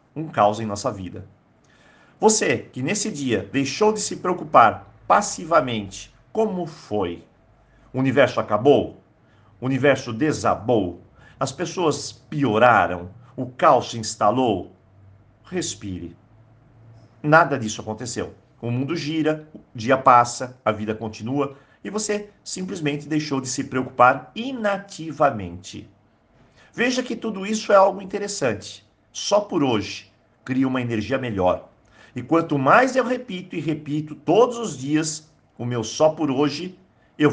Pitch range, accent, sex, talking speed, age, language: 110-165 Hz, Brazilian, male, 125 wpm, 50-69, Portuguese